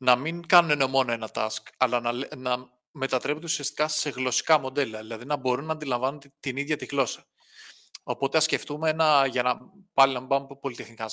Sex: male